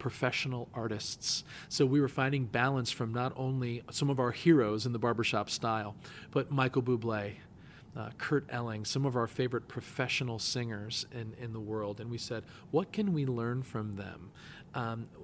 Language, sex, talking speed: English, male, 175 wpm